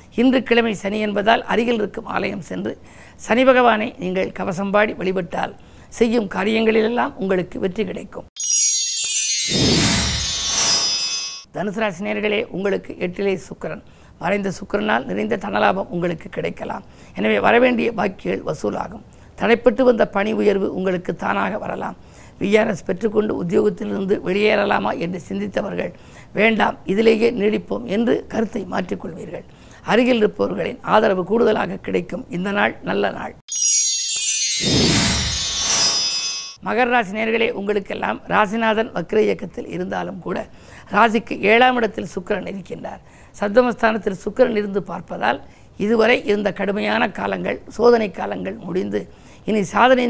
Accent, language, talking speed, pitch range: native, Tamil, 105 wpm, 200-230 Hz